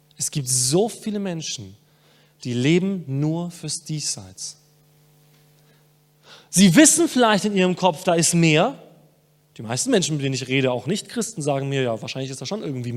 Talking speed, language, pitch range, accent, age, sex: 170 wpm, German, 150-210 Hz, German, 30-49, male